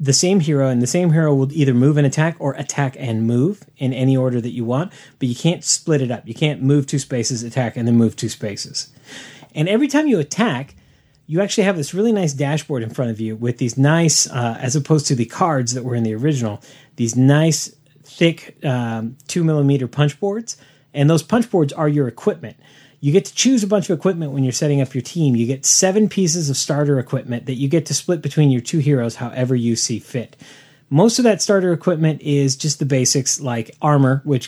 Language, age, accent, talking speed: English, 30-49, American, 225 wpm